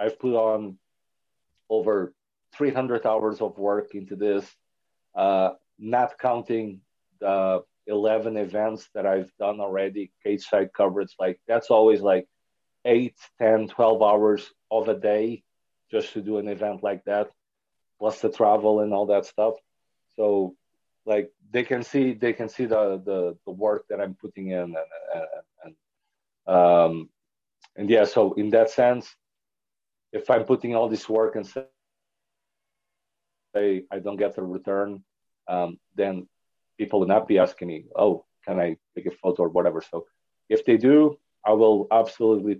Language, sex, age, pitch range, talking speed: English, male, 40-59, 100-120 Hz, 155 wpm